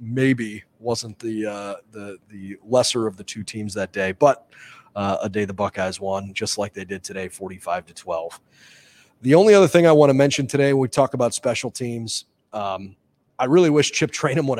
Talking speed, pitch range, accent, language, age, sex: 205 wpm, 110-135 Hz, American, English, 30-49, male